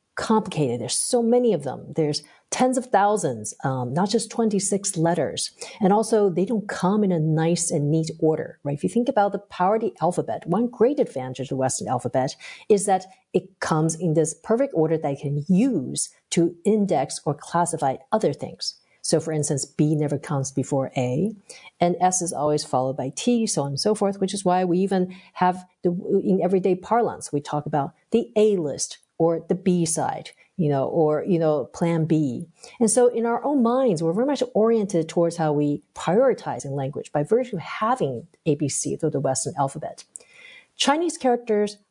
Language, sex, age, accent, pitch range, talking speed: English, female, 50-69, American, 150-215 Hz, 190 wpm